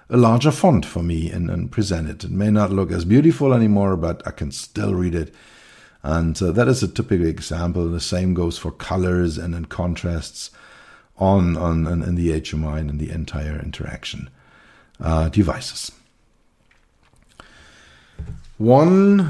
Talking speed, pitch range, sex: 160 wpm, 85-110 Hz, male